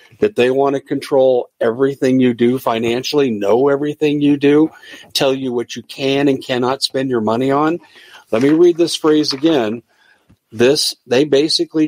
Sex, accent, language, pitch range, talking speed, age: male, American, English, 115-150 Hz, 165 wpm, 50-69